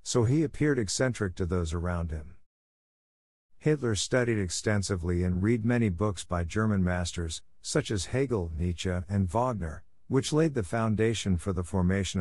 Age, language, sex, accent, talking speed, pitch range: 50-69, German, male, American, 150 wpm, 85-110 Hz